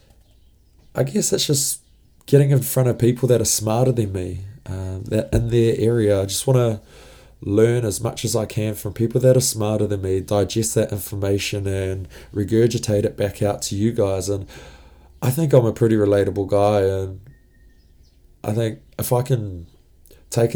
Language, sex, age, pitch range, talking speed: English, male, 20-39, 95-120 Hz, 180 wpm